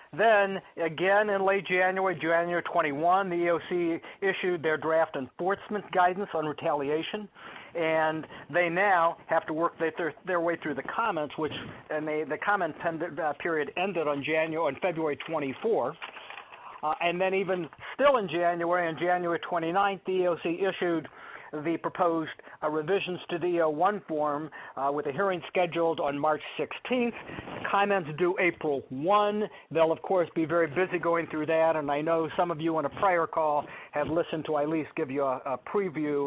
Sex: male